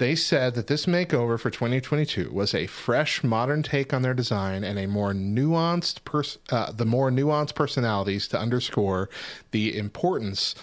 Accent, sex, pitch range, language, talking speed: American, male, 105-150 Hz, English, 165 wpm